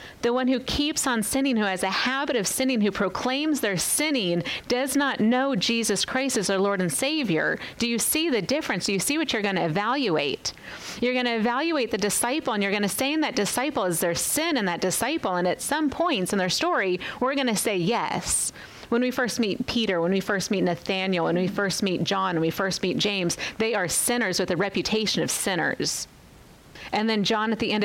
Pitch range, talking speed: 185-245 Hz, 225 wpm